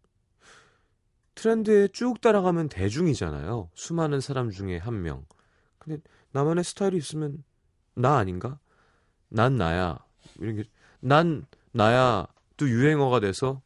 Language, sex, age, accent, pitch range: Korean, male, 30-49, native, 100-155 Hz